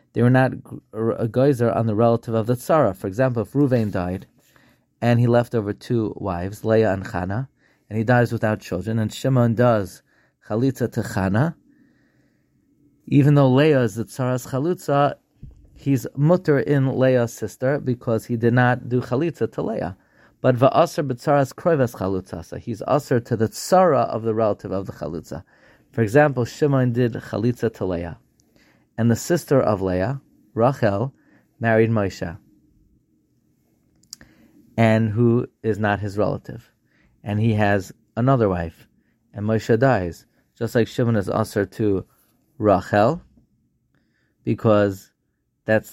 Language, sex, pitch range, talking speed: English, male, 105-130 Hz, 145 wpm